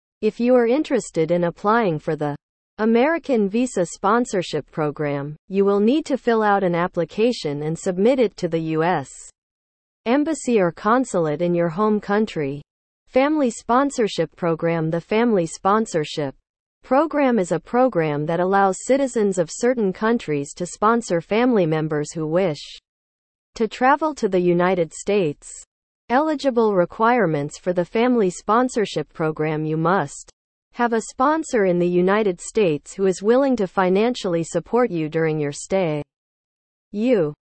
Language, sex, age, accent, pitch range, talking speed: English, female, 40-59, American, 165-230 Hz, 140 wpm